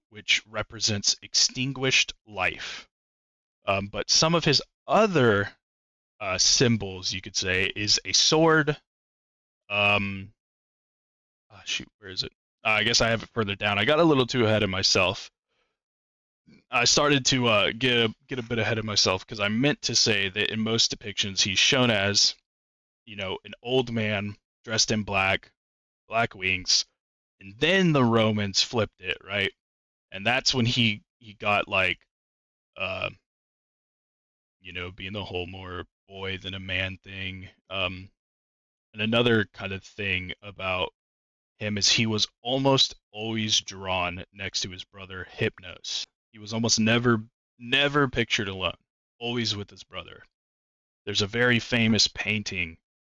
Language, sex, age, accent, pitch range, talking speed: English, male, 20-39, American, 95-115 Hz, 150 wpm